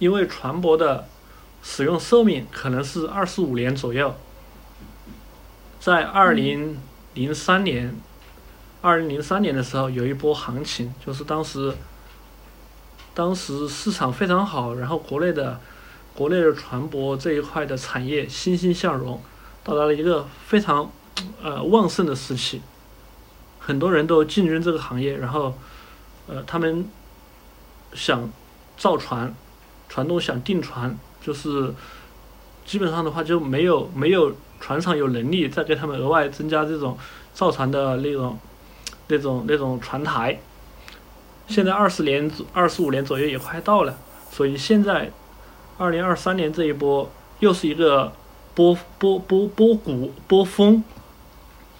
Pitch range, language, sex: 130-175 Hz, Chinese, male